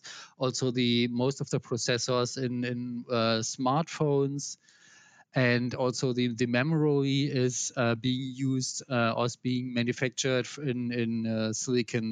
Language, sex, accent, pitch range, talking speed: English, male, German, 120-145 Hz, 135 wpm